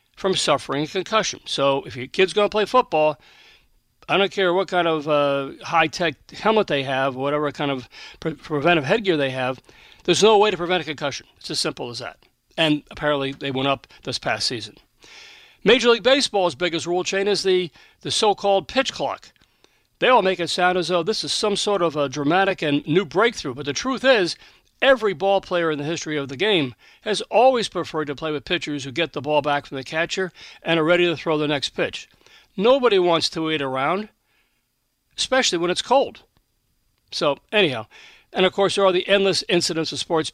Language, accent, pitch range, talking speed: English, American, 145-195 Hz, 200 wpm